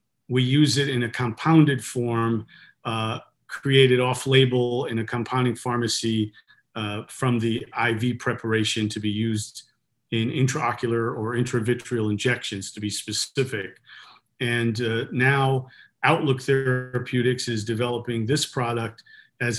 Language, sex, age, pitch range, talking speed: English, male, 40-59, 115-130 Hz, 125 wpm